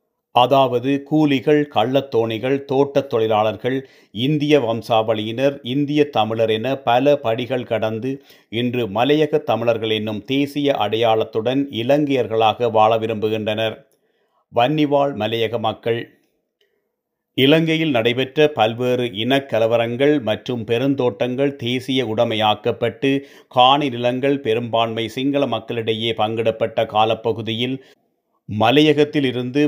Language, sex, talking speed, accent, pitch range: Tamil, male, 85 wpm, native, 115-140 Hz